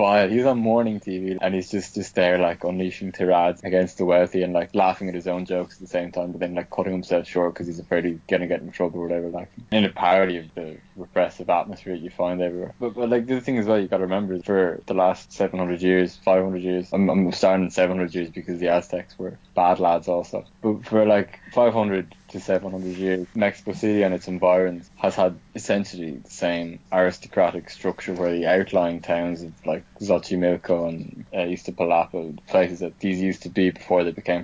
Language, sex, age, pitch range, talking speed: English, male, 20-39, 90-95 Hz, 215 wpm